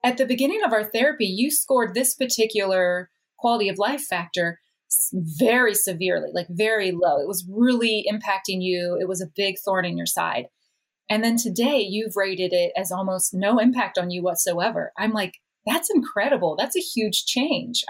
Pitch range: 185-245 Hz